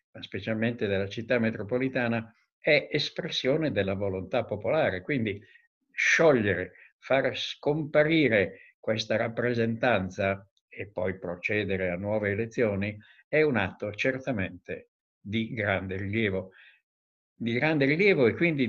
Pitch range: 105-135 Hz